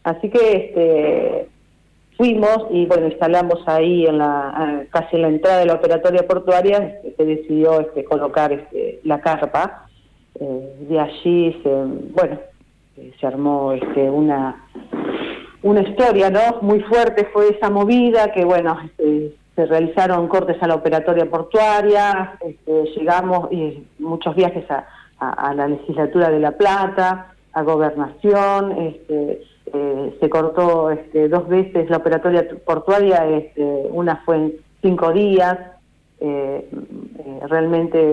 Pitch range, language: 150-195 Hz, Spanish